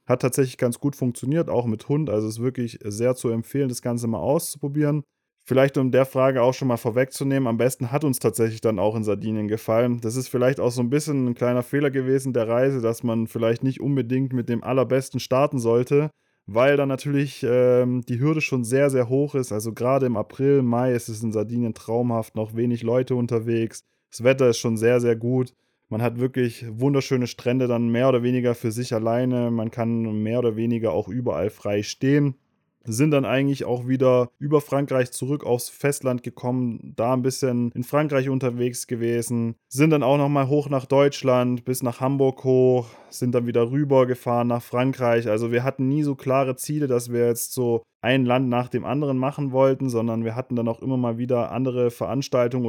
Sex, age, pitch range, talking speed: male, 20-39, 115-135 Hz, 200 wpm